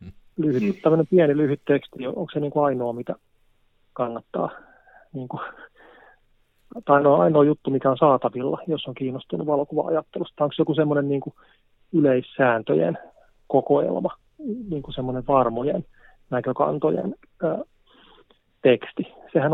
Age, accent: 40-59, native